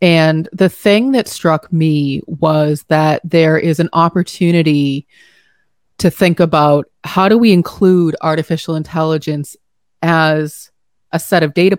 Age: 30-49